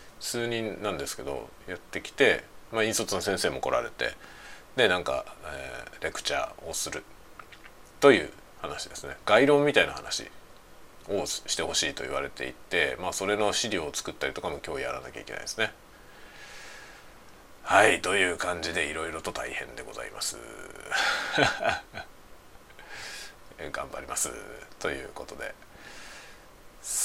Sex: male